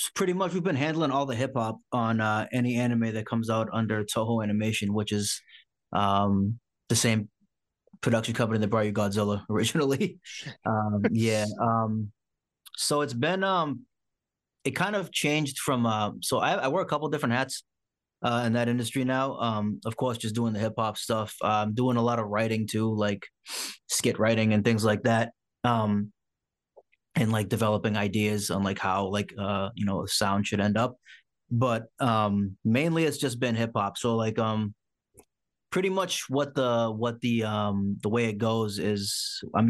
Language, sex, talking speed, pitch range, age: English, male, 180 wpm, 105-120 Hz, 20-39